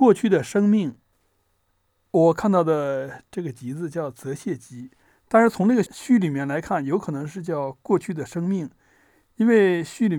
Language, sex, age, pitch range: Chinese, male, 60-79, 135-195 Hz